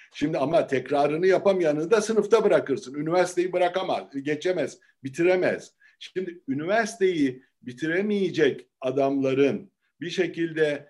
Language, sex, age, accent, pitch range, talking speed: Turkish, male, 60-79, native, 140-190 Hz, 95 wpm